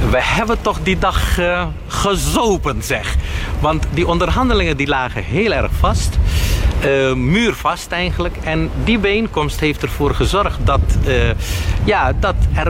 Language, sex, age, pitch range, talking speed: Dutch, male, 50-69, 110-160 Hz, 140 wpm